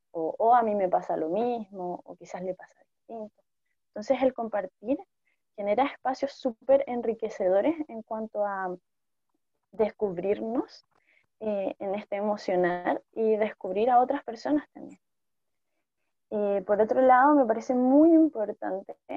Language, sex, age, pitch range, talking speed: Spanish, female, 20-39, 195-255 Hz, 130 wpm